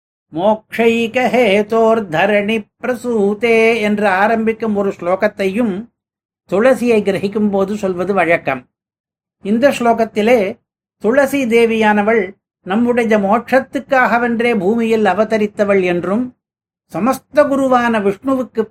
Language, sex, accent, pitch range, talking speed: Tamil, male, native, 200-235 Hz, 75 wpm